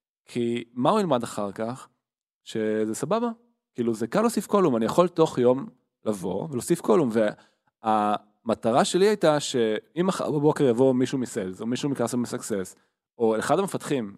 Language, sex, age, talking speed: Hebrew, male, 20-39, 150 wpm